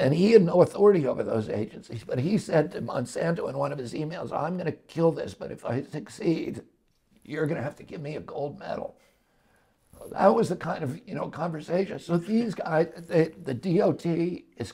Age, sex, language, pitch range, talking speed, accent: 60-79, male, English, 145-165 Hz, 215 wpm, American